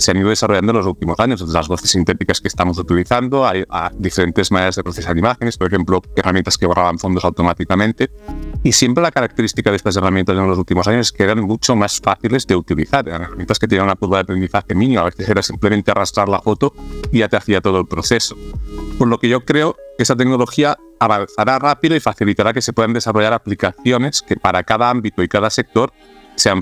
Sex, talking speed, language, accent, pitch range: male, 210 wpm, Spanish, Spanish, 95-110 Hz